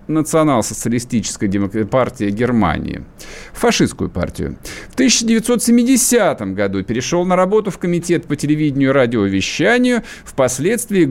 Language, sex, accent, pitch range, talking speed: Russian, male, native, 120-195 Hz, 95 wpm